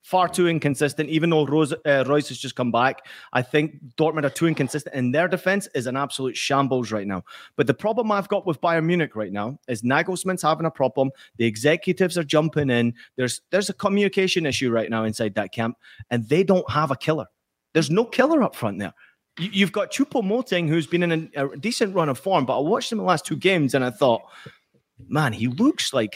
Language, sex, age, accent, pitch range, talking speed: English, male, 30-49, British, 120-160 Hz, 225 wpm